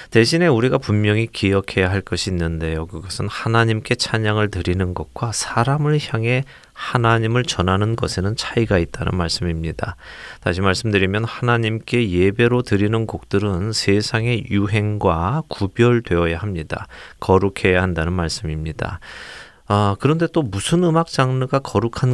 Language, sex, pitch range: Korean, male, 95-120 Hz